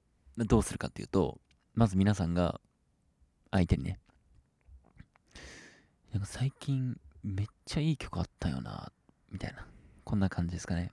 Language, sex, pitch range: Japanese, male, 85-120 Hz